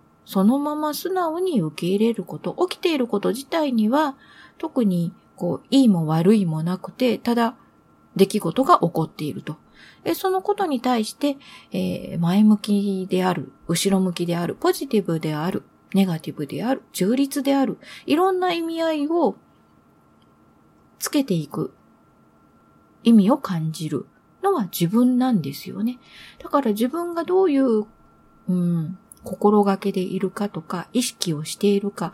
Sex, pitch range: female, 180-250 Hz